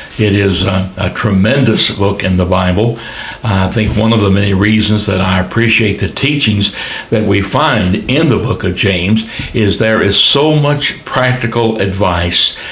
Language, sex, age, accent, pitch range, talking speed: English, male, 60-79, American, 95-115 Hz, 170 wpm